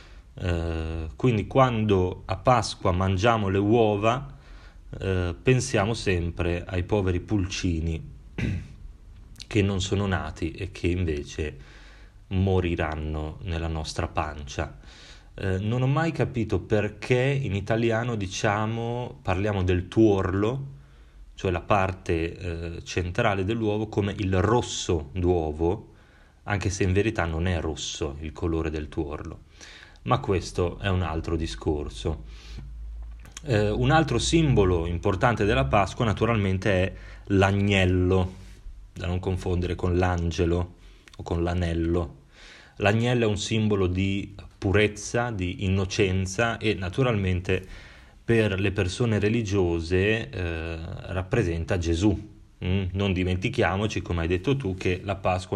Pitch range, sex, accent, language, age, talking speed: 85-105 Hz, male, native, Italian, 30-49, 120 wpm